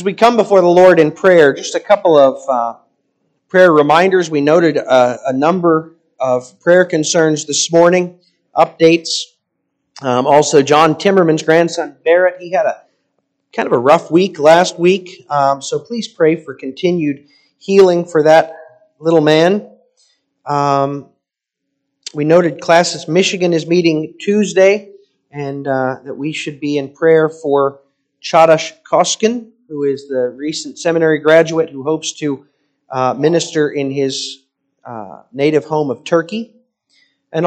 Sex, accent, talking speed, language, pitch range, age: male, American, 145 wpm, English, 140-175 Hz, 40-59